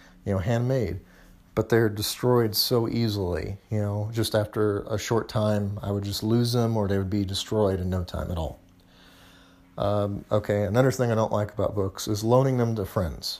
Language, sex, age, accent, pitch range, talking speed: English, male, 30-49, American, 95-115 Hz, 195 wpm